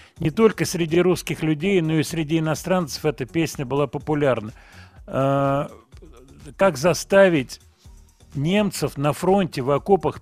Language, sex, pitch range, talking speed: Russian, male, 125-165 Hz, 130 wpm